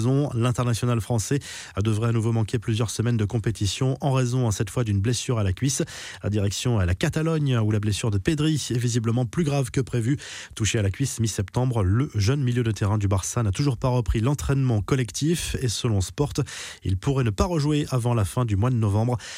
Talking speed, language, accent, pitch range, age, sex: 210 wpm, French, French, 105-135 Hz, 20-39, male